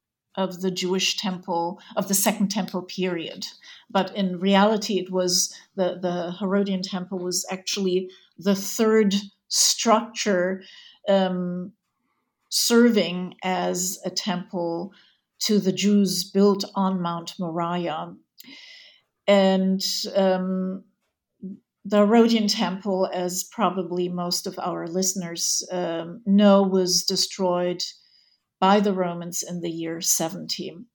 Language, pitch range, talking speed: English, 185-210 Hz, 110 wpm